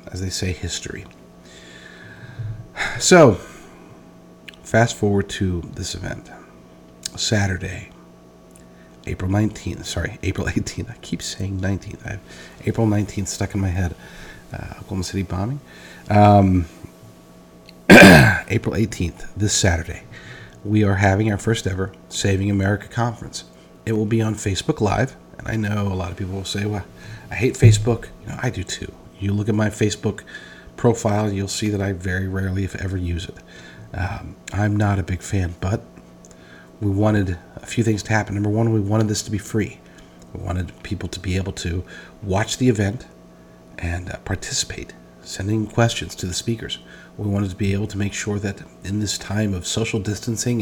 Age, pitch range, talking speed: 40-59, 90-110 Hz, 165 wpm